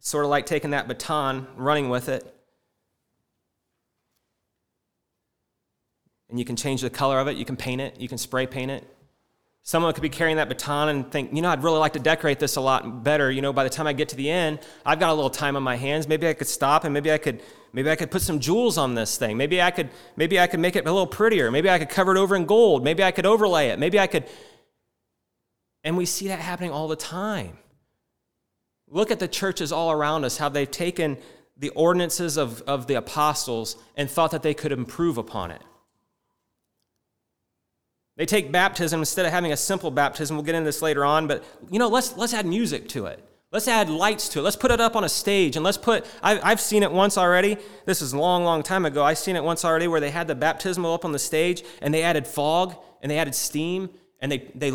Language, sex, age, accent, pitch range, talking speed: English, male, 30-49, American, 140-180 Hz, 235 wpm